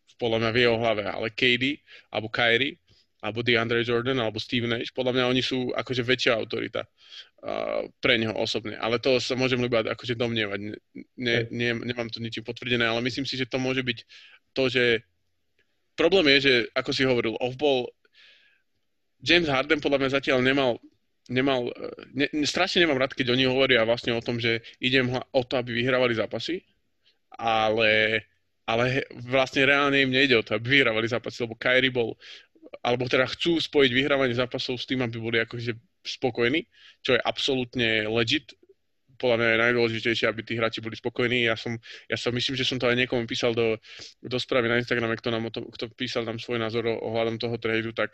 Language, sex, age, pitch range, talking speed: Slovak, male, 20-39, 115-130 Hz, 180 wpm